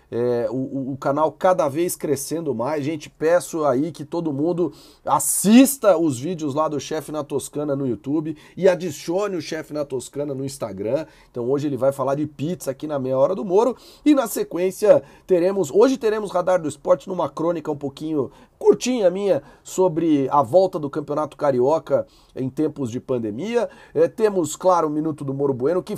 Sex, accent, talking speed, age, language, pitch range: male, Brazilian, 180 wpm, 40-59, Portuguese, 145-190 Hz